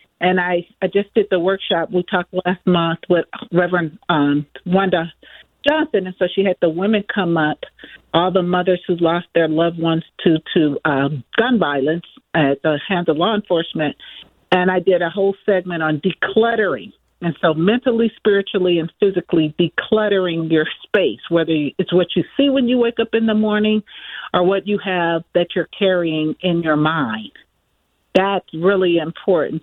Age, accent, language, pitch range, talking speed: 50-69, American, English, 160-200 Hz, 170 wpm